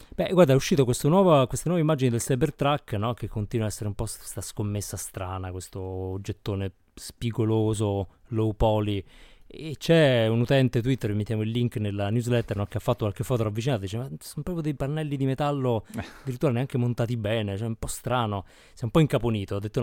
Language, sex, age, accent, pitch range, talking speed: Italian, male, 20-39, native, 105-130 Hz, 195 wpm